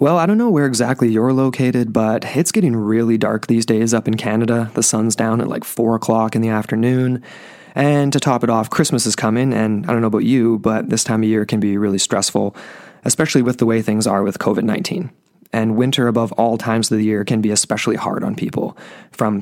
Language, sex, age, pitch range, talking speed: English, male, 20-39, 110-130 Hz, 230 wpm